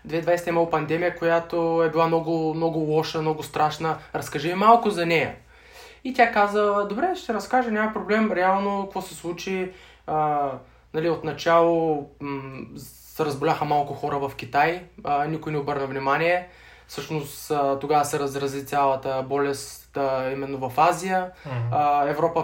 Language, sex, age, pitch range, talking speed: Bulgarian, male, 20-39, 140-165 Hz, 145 wpm